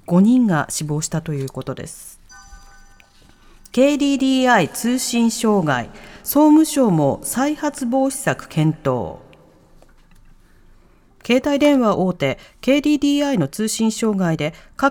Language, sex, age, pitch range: Japanese, female, 40-59, 165-270 Hz